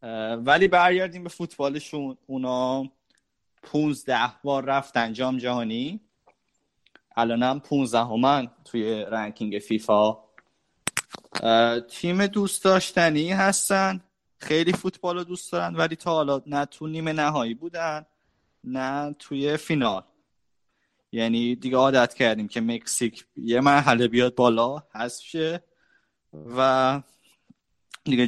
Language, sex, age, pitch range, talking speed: Persian, male, 20-39, 115-145 Hz, 100 wpm